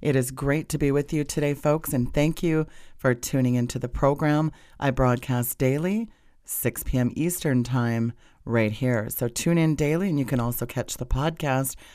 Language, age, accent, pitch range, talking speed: English, 40-59, American, 125-150 Hz, 185 wpm